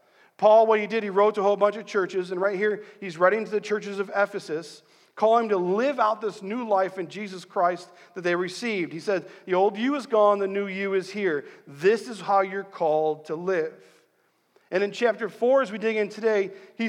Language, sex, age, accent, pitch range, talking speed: English, male, 40-59, American, 175-230 Hz, 225 wpm